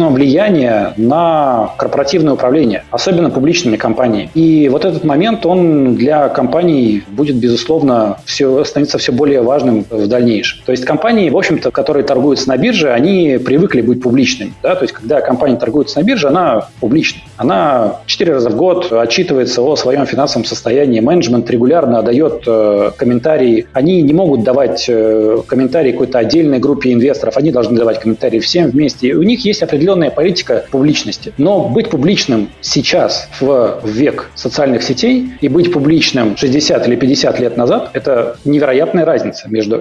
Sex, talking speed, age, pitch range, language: male, 150 wpm, 30-49, 115-160 Hz, Russian